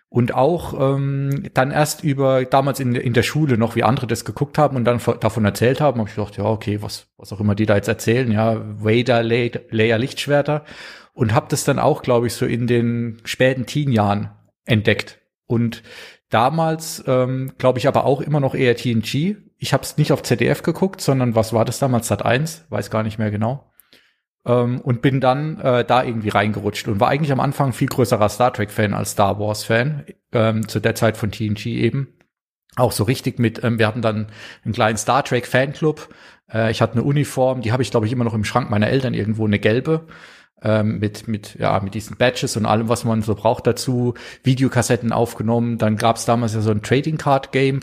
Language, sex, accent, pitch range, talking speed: German, male, German, 110-135 Hz, 205 wpm